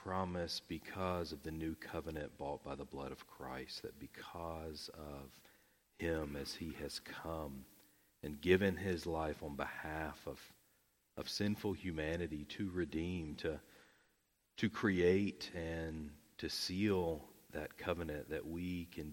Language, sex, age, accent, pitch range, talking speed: English, male, 40-59, American, 65-90 Hz, 135 wpm